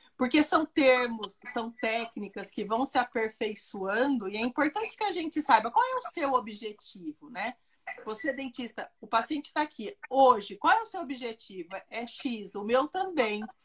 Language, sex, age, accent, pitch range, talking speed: English, female, 40-59, Brazilian, 220-285 Hz, 175 wpm